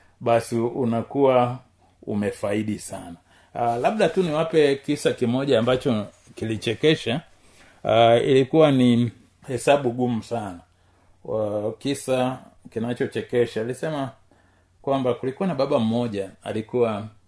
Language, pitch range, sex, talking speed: Swahili, 95-130 Hz, male, 95 wpm